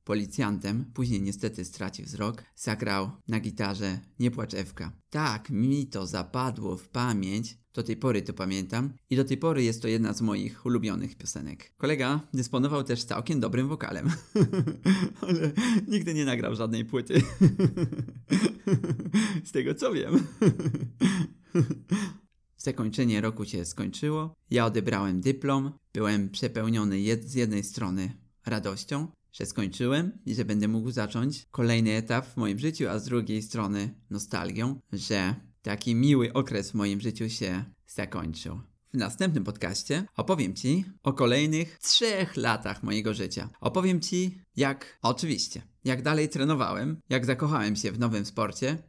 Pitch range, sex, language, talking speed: 105-145 Hz, male, Polish, 135 wpm